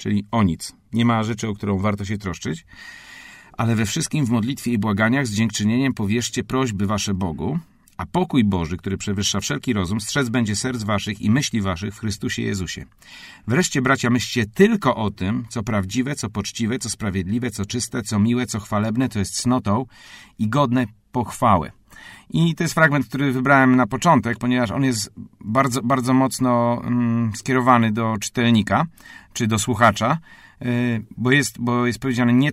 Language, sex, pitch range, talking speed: Polish, male, 105-130 Hz, 170 wpm